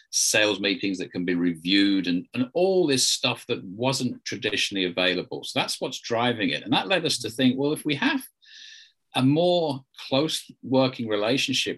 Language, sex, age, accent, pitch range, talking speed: English, male, 50-69, British, 100-150 Hz, 180 wpm